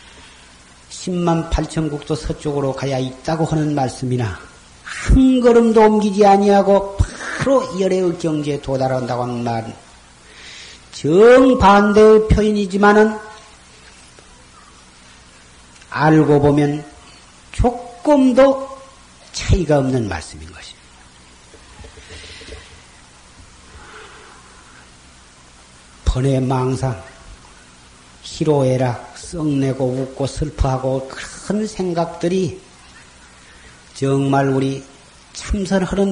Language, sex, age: Korean, male, 40-59